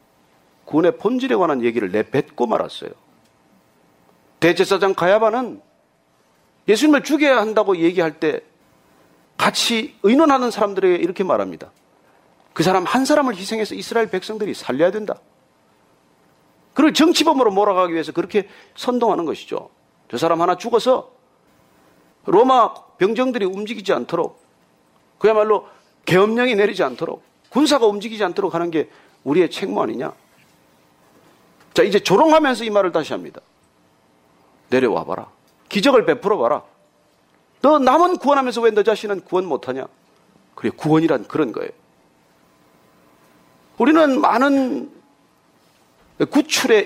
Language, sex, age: Korean, male, 40-59